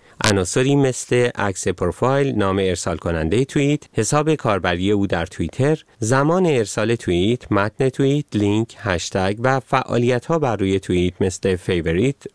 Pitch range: 95-140 Hz